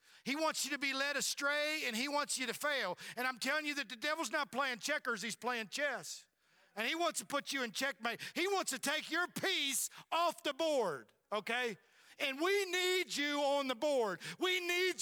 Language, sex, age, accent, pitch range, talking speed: English, male, 50-69, American, 195-295 Hz, 210 wpm